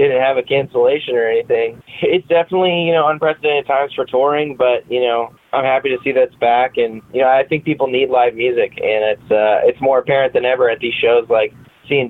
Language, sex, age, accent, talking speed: English, male, 10-29, American, 225 wpm